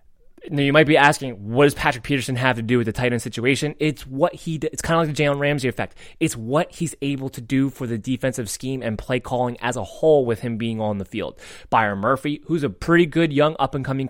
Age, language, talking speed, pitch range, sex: 20-39, English, 245 wpm, 115-145 Hz, male